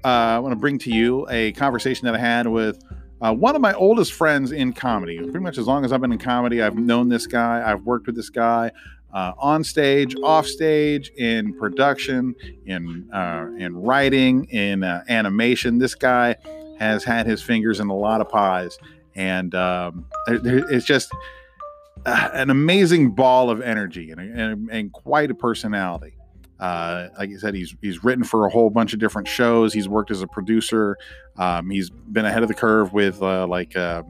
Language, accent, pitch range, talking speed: English, American, 95-125 Hz, 190 wpm